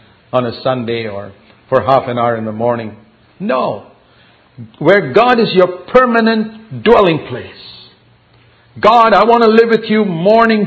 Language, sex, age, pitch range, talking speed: English, male, 50-69, 170-235 Hz, 150 wpm